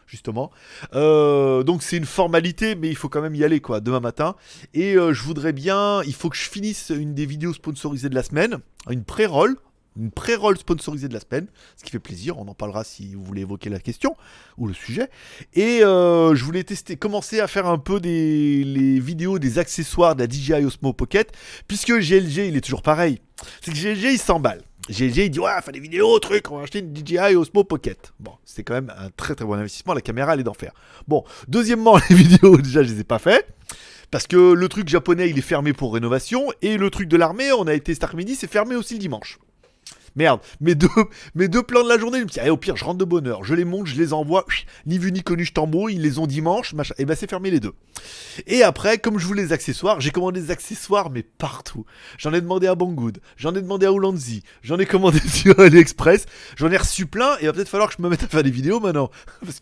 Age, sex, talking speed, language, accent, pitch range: 30-49, male, 245 wpm, French, French, 140-195 Hz